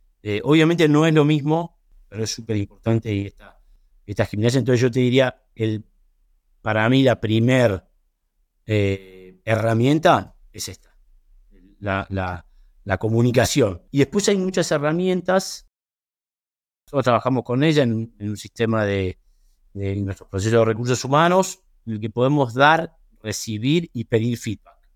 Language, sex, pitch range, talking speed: Spanish, male, 100-140 Hz, 140 wpm